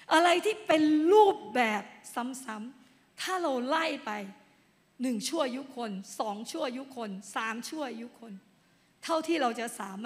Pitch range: 220-290 Hz